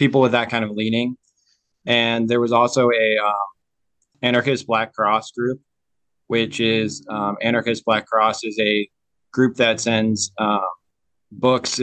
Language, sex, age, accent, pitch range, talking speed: English, male, 20-39, American, 105-115 Hz, 145 wpm